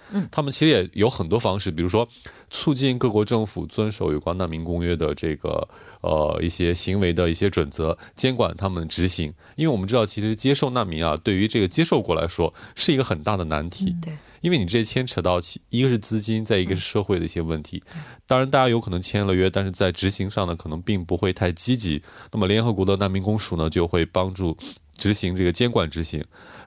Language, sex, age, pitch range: Korean, male, 30-49, 90-115 Hz